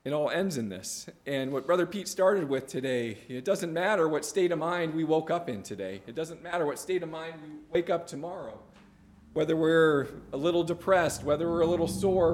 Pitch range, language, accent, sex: 120-175 Hz, English, American, male